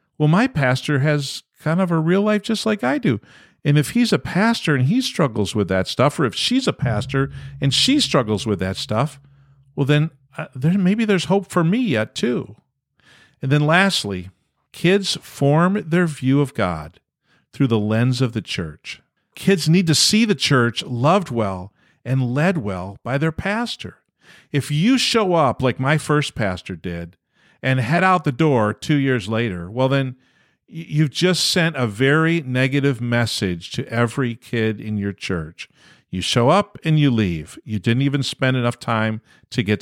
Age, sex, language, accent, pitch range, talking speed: 50-69, male, English, American, 110-160 Hz, 180 wpm